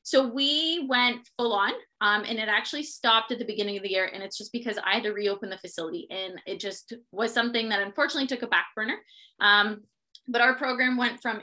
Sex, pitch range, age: female, 210-255 Hz, 20-39